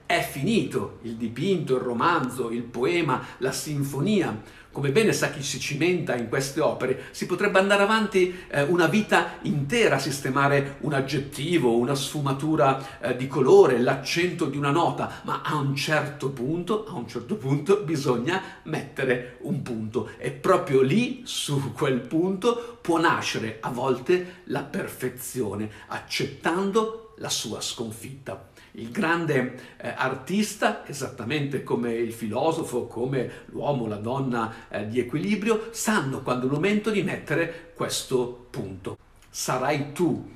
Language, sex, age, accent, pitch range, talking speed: Italian, male, 50-69, native, 125-180 Hz, 135 wpm